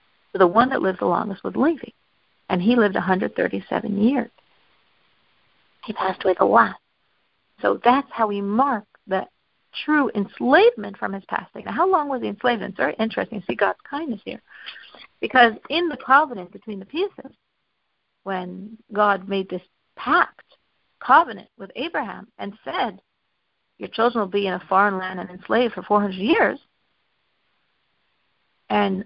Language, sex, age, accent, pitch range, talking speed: English, female, 50-69, American, 195-255 Hz, 150 wpm